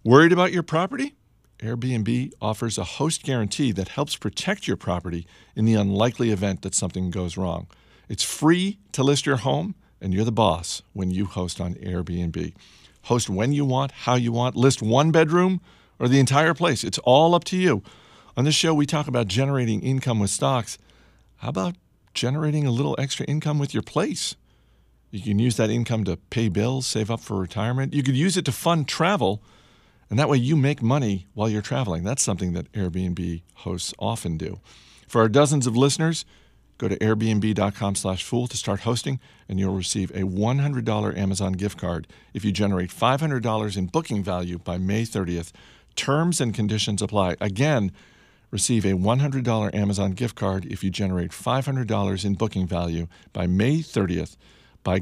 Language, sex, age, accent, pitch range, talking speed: English, male, 50-69, American, 95-135 Hz, 175 wpm